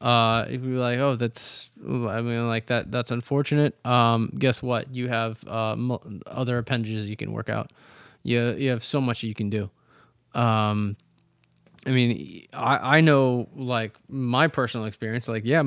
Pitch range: 110-130 Hz